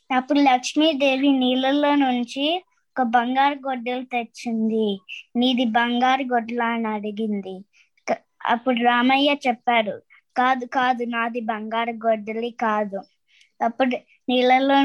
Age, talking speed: 20-39, 95 wpm